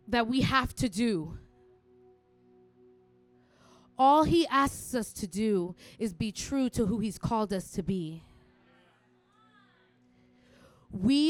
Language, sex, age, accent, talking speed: English, female, 20-39, American, 115 wpm